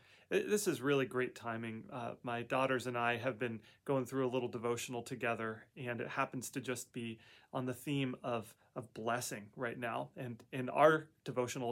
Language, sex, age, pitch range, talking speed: English, male, 30-49, 120-140 Hz, 185 wpm